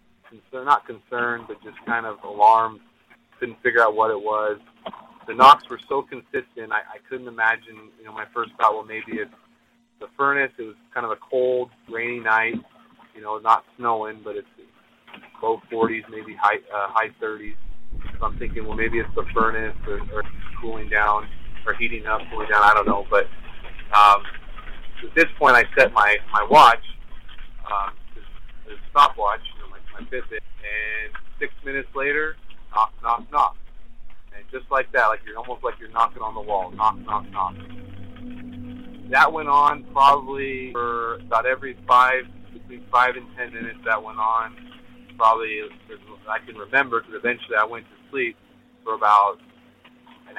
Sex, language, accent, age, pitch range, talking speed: male, English, American, 30-49, 110-125 Hz, 165 wpm